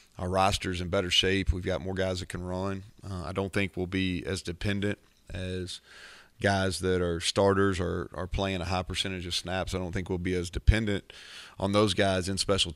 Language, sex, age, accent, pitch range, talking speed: English, male, 40-59, American, 90-100 Hz, 210 wpm